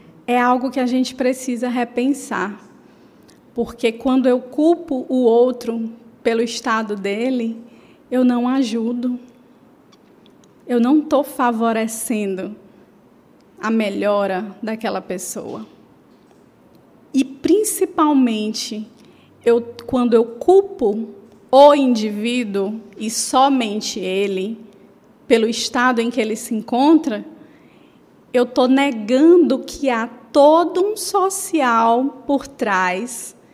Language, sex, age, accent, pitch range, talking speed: Portuguese, female, 20-39, Brazilian, 230-285 Hz, 95 wpm